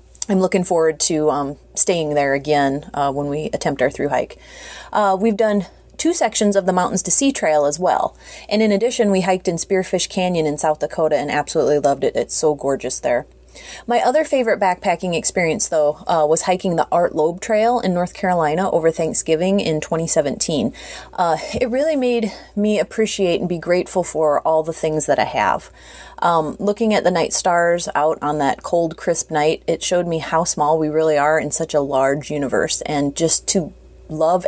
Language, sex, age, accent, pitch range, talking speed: English, female, 30-49, American, 150-195 Hz, 190 wpm